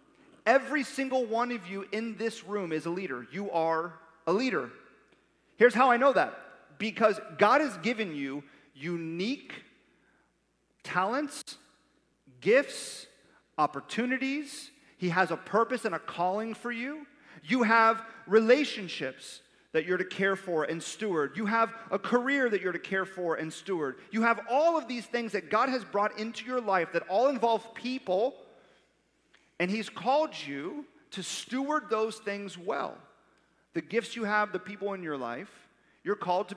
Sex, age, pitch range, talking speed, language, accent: male, 40-59, 175-235 Hz, 160 wpm, English, American